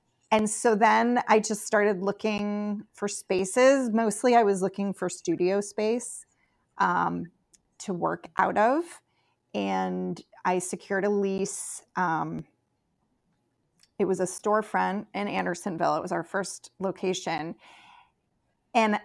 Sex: female